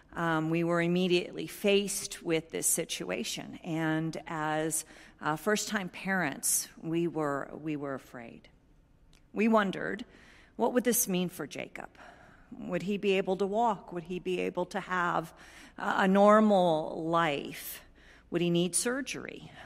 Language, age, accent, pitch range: English, 50-69, American, 160-200 Hz